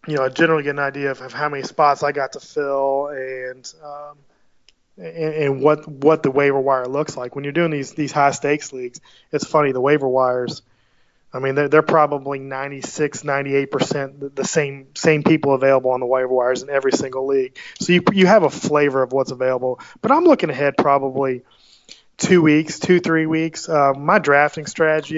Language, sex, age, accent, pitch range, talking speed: English, male, 20-39, American, 135-150 Hz, 200 wpm